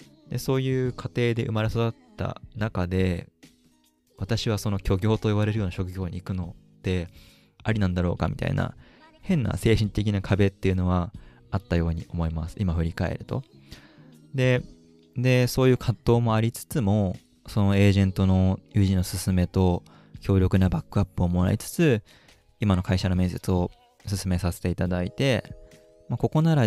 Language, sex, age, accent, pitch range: Japanese, male, 20-39, native, 90-110 Hz